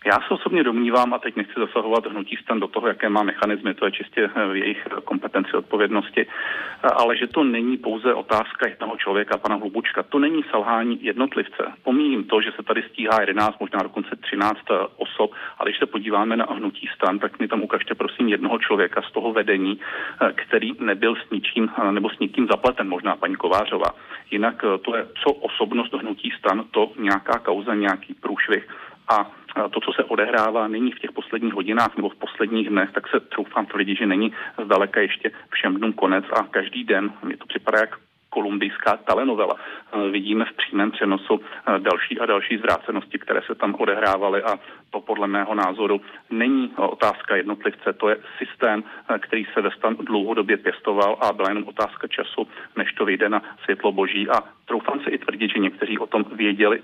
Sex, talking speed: male, 180 wpm